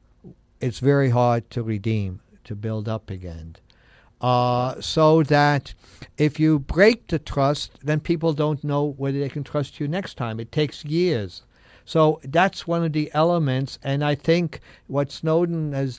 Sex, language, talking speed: male, English, 160 wpm